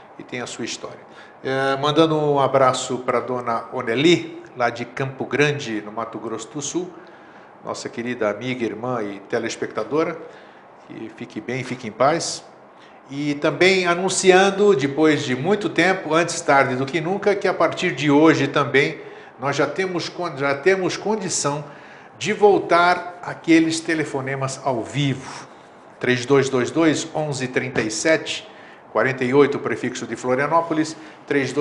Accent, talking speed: Brazilian, 135 wpm